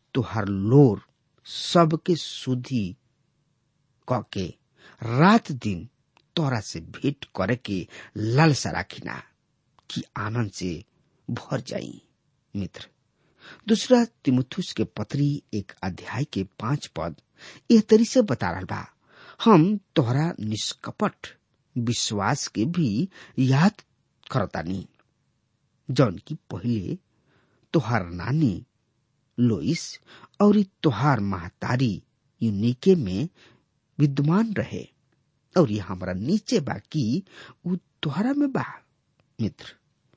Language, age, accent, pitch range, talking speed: English, 50-69, Indian, 115-170 Hz, 100 wpm